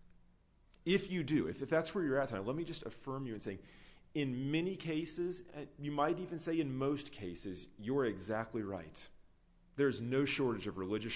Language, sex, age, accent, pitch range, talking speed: English, male, 40-59, American, 90-135 Hz, 190 wpm